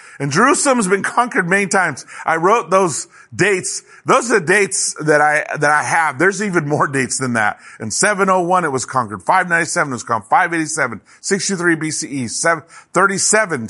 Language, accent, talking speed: English, American, 165 wpm